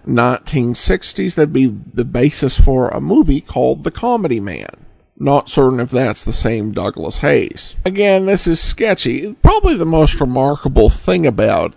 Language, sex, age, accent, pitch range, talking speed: English, male, 50-69, American, 125-175 Hz, 155 wpm